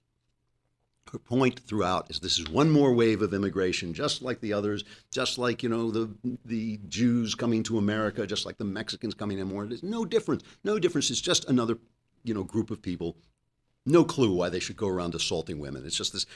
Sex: male